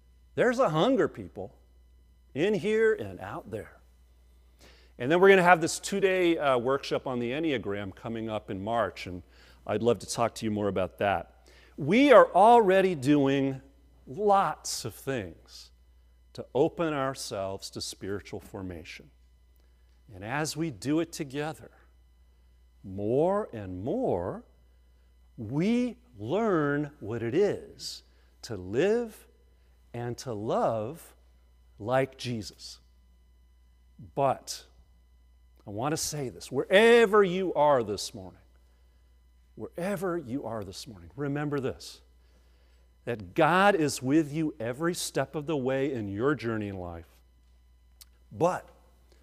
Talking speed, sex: 125 wpm, male